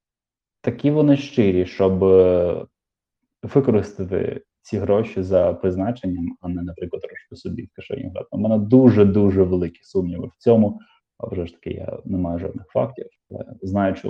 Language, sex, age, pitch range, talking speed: Ukrainian, male, 20-39, 95-125 Hz, 145 wpm